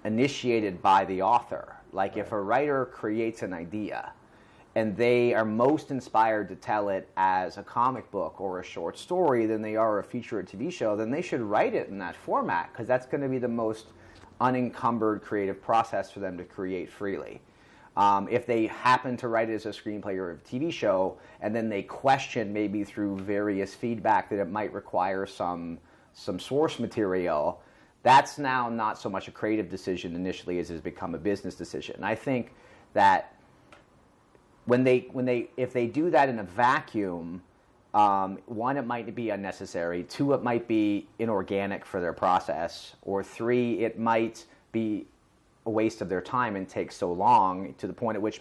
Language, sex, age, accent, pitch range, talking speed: English, male, 30-49, American, 95-120 Hz, 185 wpm